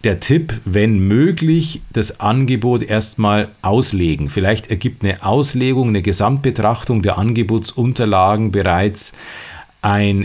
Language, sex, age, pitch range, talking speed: German, male, 40-59, 100-130 Hz, 105 wpm